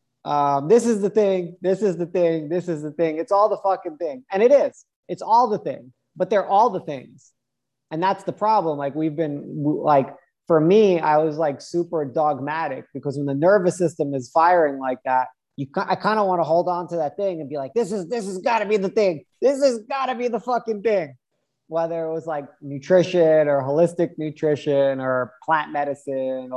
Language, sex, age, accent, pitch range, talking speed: English, male, 20-39, American, 140-185 Hz, 215 wpm